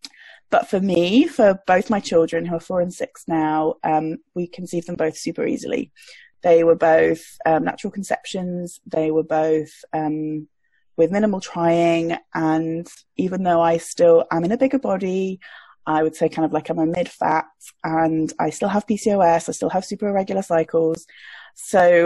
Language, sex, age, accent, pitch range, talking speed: English, female, 20-39, British, 165-200 Hz, 175 wpm